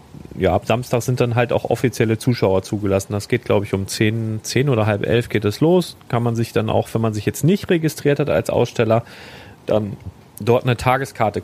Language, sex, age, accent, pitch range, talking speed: German, male, 40-59, German, 105-130 Hz, 220 wpm